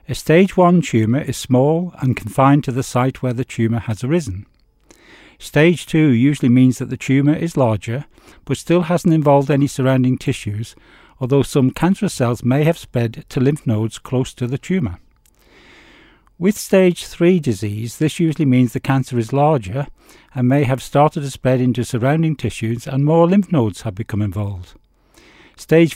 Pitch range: 120-155 Hz